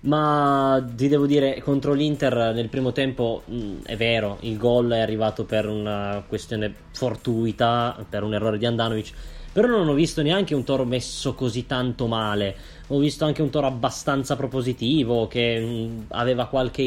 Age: 20-39